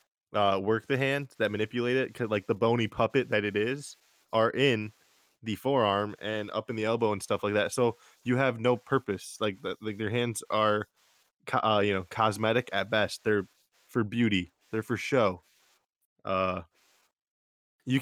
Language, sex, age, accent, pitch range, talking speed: English, male, 20-39, American, 105-125 Hz, 175 wpm